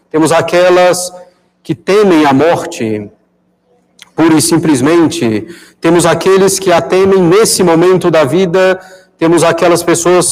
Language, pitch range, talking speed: Portuguese, 145-175 Hz, 120 wpm